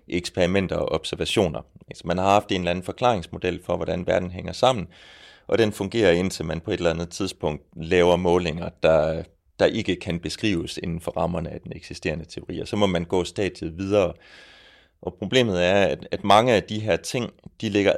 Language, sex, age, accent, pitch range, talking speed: Danish, male, 30-49, native, 85-105 Hz, 195 wpm